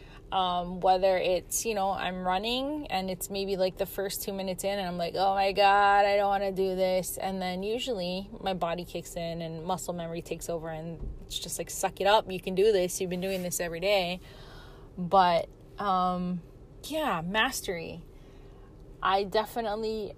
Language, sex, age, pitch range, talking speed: English, female, 20-39, 180-220 Hz, 185 wpm